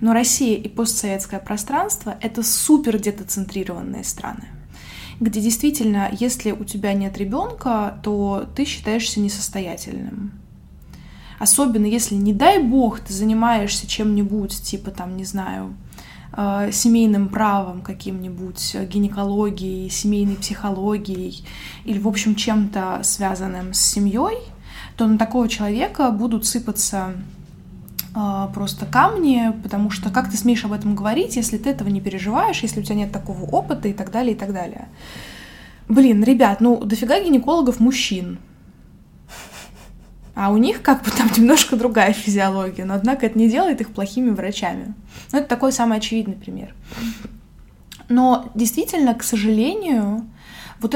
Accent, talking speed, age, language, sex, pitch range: native, 135 wpm, 20-39, Russian, female, 200-235 Hz